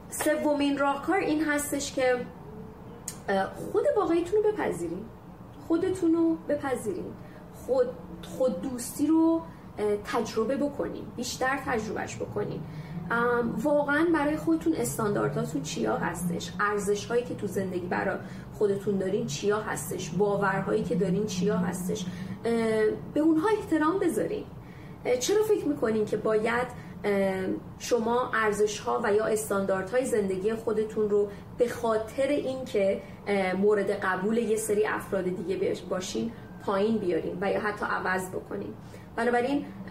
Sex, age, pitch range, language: female, 30-49, 200-280 Hz, Persian